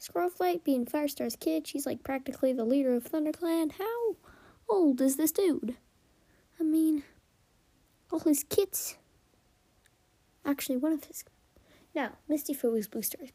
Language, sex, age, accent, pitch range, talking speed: English, female, 10-29, American, 245-325 Hz, 130 wpm